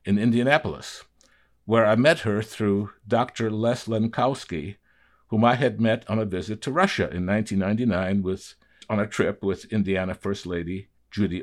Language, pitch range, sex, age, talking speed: English, 90-110 Hz, male, 60-79, 160 wpm